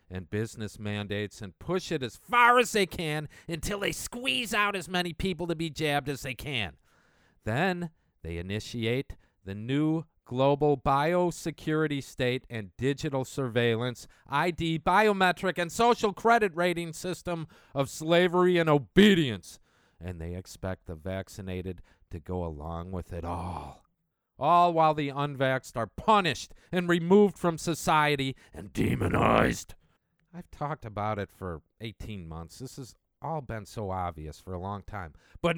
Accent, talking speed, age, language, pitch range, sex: American, 145 wpm, 50-69, English, 100-170 Hz, male